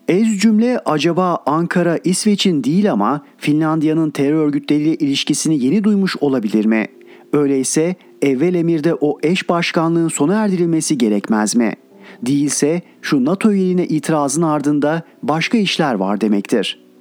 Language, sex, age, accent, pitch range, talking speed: Turkish, male, 40-59, native, 140-180 Hz, 125 wpm